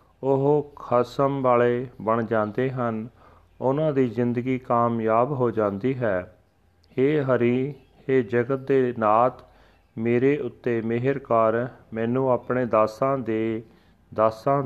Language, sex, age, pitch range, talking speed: Punjabi, male, 40-59, 110-130 Hz, 115 wpm